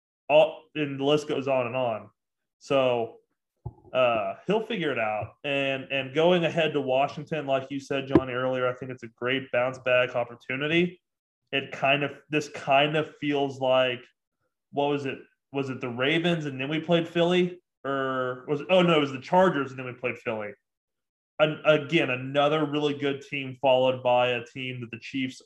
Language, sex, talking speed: English, male, 190 wpm